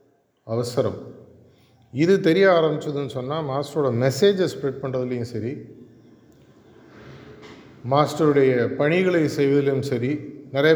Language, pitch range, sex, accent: Tamil, 125-150 Hz, male, native